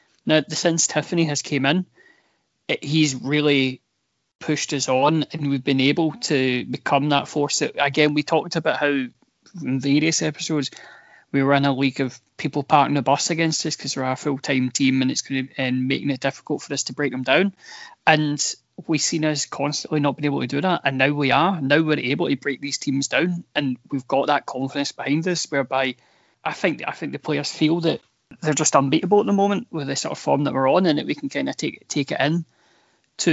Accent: British